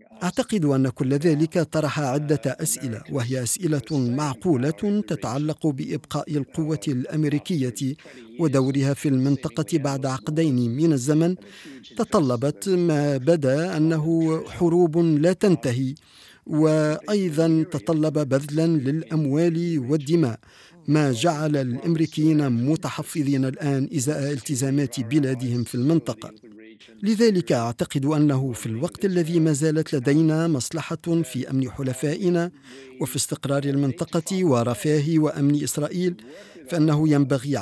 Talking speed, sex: 100 wpm, male